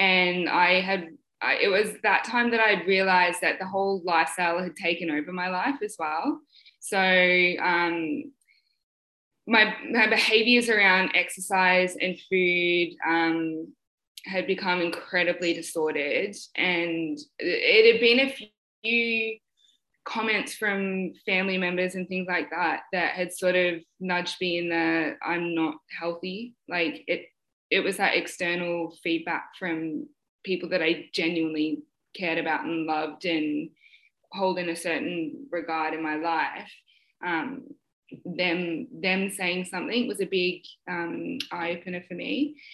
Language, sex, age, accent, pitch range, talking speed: English, female, 10-29, Australian, 170-215 Hz, 140 wpm